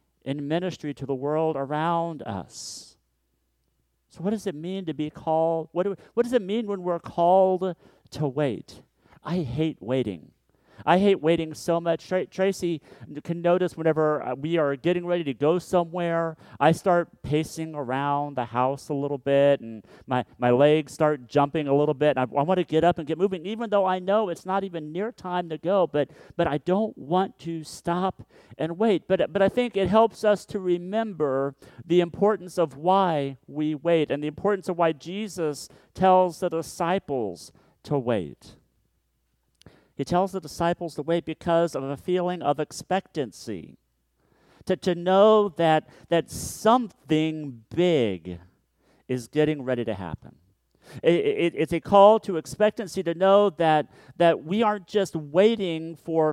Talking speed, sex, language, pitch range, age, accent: 170 wpm, male, English, 140-180 Hz, 40-59, American